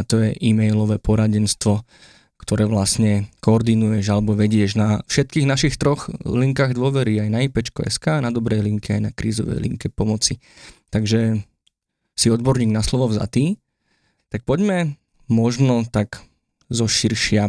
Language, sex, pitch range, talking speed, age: Slovak, male, 105-120 Hz, 135 wpm, 20-39